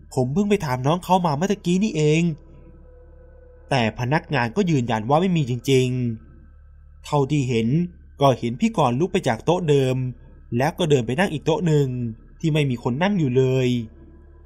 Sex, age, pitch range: male, 20-39, 110-150 Hz